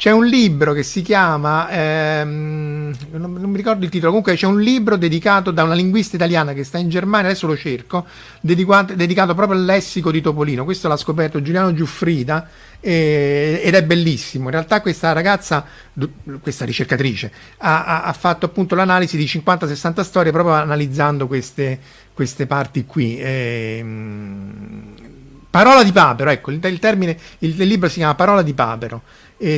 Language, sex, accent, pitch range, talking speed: Italian, male, native, 150-195 Hz, 165 wpm